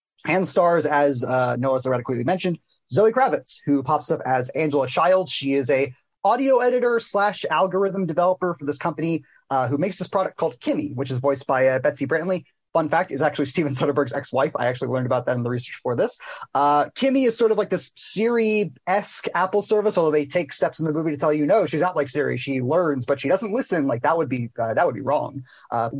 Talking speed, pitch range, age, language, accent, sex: 220 wpm, 140-195 Hz, 30-49, English, American, male